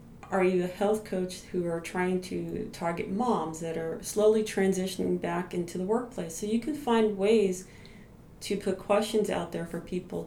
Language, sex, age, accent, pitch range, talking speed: English, female, 40-59, American, 175-220 Hz, 180 wpm